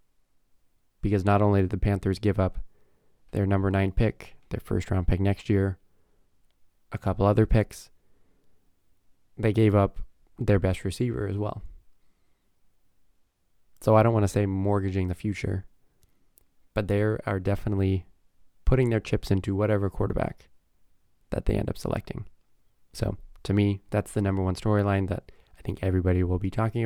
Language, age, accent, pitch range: English, 20-39, American, 95-110 Hz